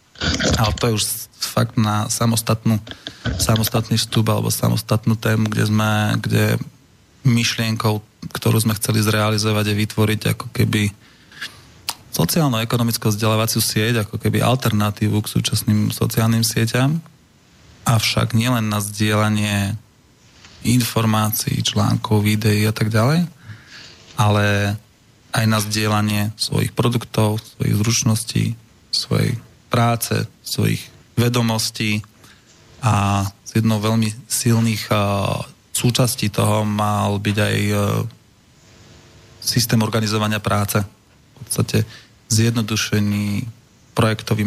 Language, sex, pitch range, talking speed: Slovak, male, 105-120 Hz, 100 wpm